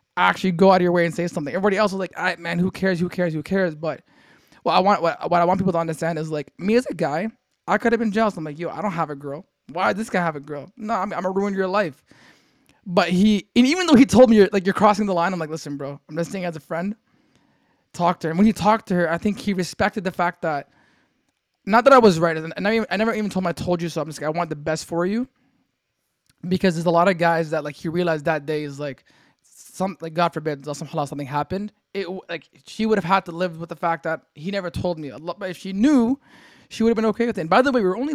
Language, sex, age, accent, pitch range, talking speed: English, male, 20-39, American, 160-200 Hz, 290 wpm